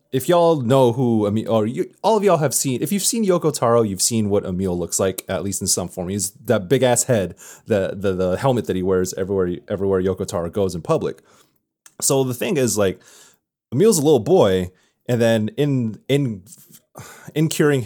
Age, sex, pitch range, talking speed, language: 30-49, male, 95-135 Hz, 210 wpm, English